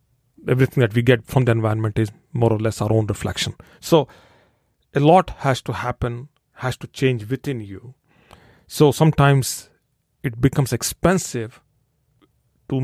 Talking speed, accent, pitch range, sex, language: 145 wpm, Indian, 115-140 Hz, male, English